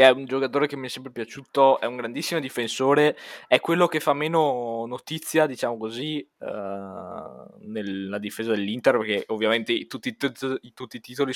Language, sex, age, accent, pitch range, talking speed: Italian, male, 20-39, native, 115-145 Hz, 160 wpm